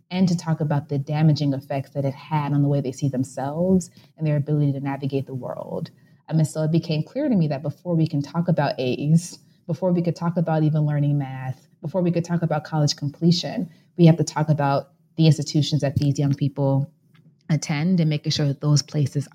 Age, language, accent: 20-39, English, American